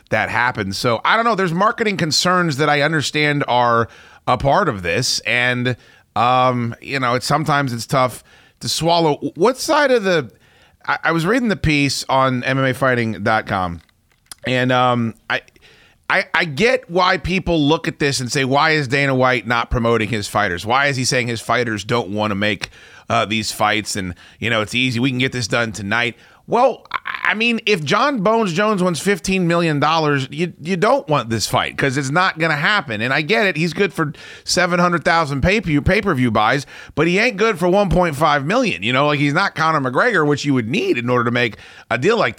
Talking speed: 205 wpm